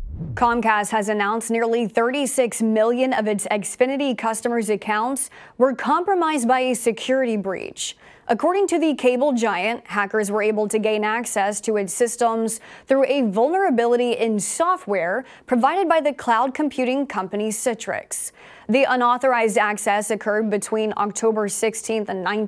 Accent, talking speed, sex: American, 135 wpm, female